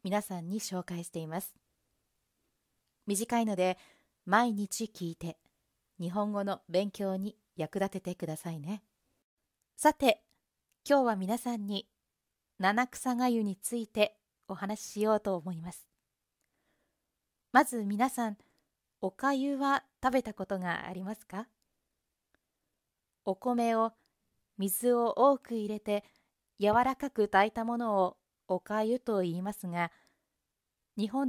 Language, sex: Japanese, female